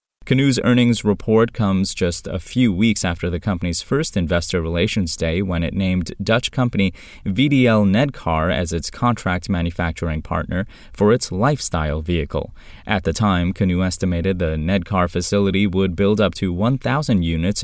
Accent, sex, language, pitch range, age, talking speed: American, male, English, 85-110 Hz, 20-39, 155 wpm